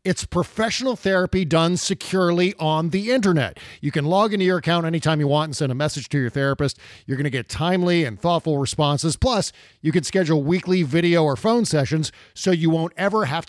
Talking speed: 200 wpm